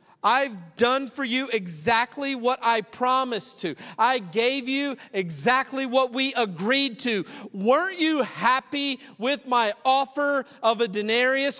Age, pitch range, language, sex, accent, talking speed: 40-59, 185-275 Hz, English, male, American, 135 wpm